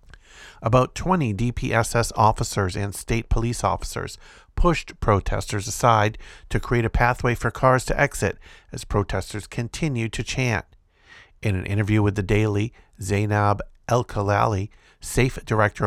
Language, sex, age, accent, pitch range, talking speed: English, male, 50-69, American, 100-125 Hz, 130 wpm